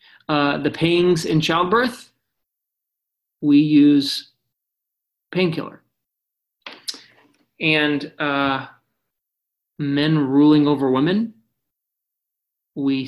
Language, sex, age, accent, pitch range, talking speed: English, male, 30-49, American, 130-170 Hz, 70 wpm